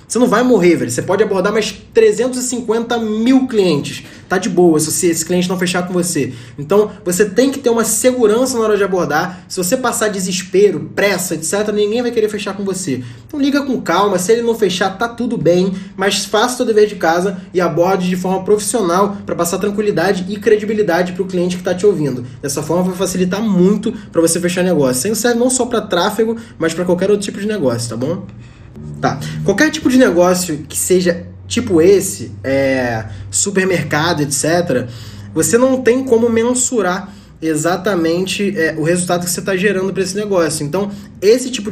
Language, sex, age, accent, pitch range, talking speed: Portuguese, male, 20-39, Brazilian, 165-215 Hz, 195 wpm